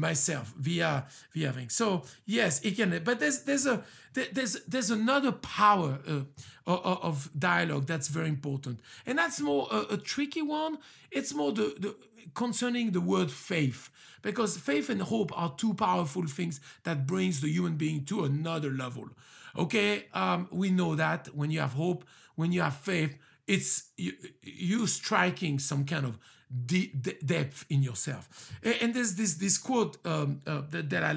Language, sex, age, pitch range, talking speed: English, male, 50-69, 145-215 Hz, 165 wpm